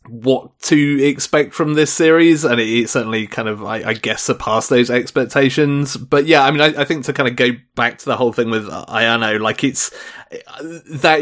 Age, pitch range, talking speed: 30-49, 110-135 Hz, 210 wpm